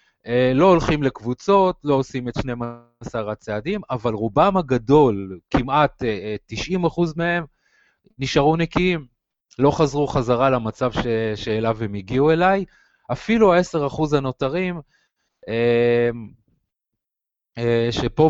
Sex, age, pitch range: male, 30-49, 115-155 Hz